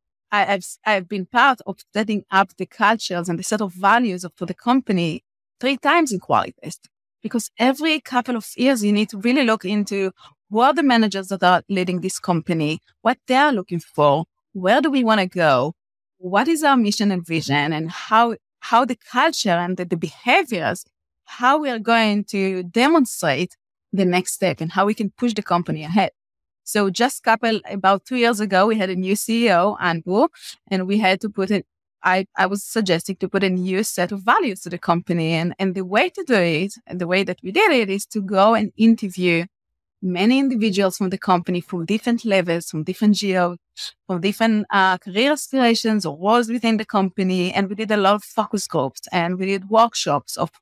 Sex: female